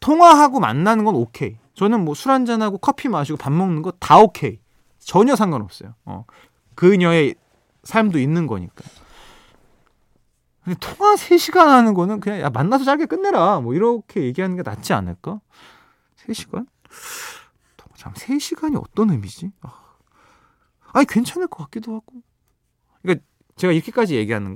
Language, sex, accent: Korean, male, native